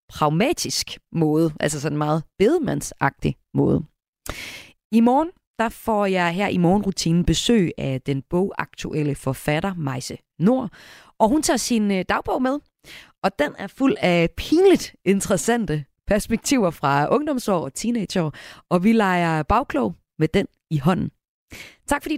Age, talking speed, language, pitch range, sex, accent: 30-49, 135 wpm, Danish, 155-230 Hz, female, native